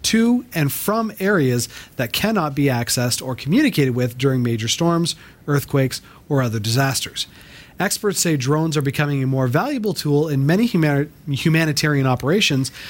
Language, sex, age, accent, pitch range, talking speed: English, male, 30-49, American, 130-165 Hz, 145 wpm